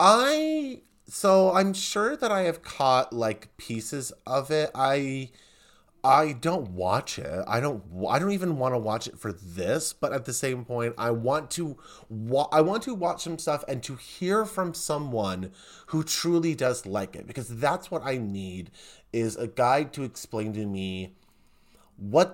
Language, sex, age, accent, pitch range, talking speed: English, male, 30-49, American, 105-155 Hz, 175 wpm